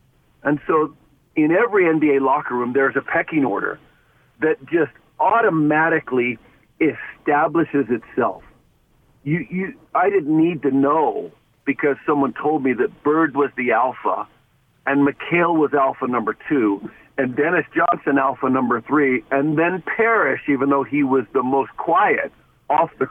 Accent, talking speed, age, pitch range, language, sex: American, 145 wpm, 50-69, 135-160 Hz, English, male